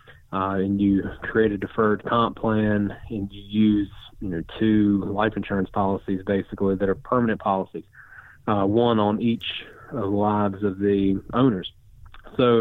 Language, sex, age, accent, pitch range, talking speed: English, male, 30-49, American, 100-115 Hz, 150 wpm